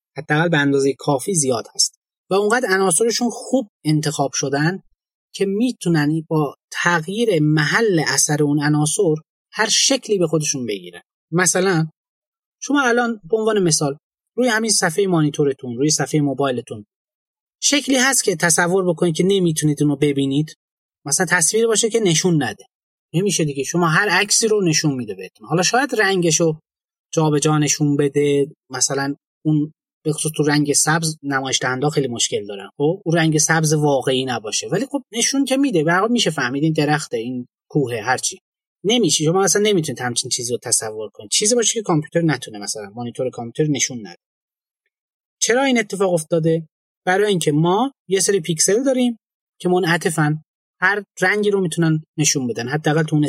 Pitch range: 145-200 Hz